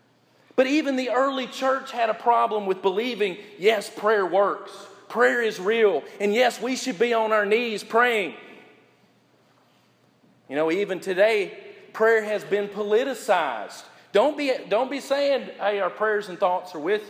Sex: male